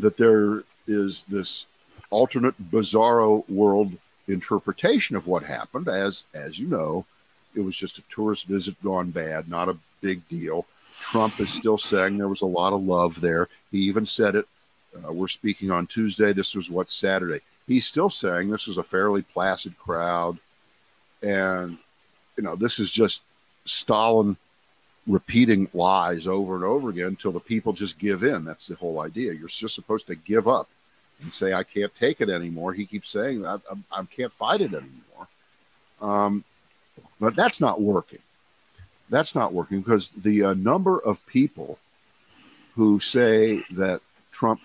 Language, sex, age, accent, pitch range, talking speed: English, male, 50-69, American, 95-110 Hz, 165 wpm